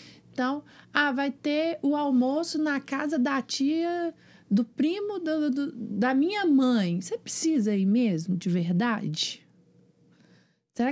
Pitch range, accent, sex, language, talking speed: 210-285 Hz, Brazilian, female, Portuguese, 130 wpm